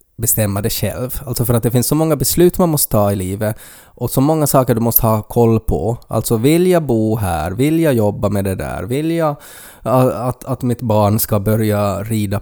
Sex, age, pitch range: male, 20-39, 110-155 Hz